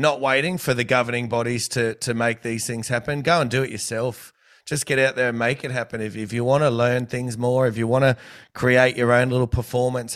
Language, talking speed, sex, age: English, 250 wpm, male, 30-49